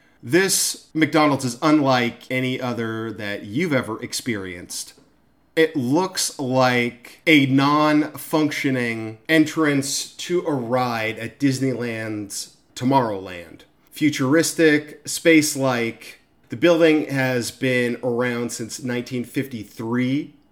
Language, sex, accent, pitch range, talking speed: English, male, American, 120-145 Hz, 90 wpm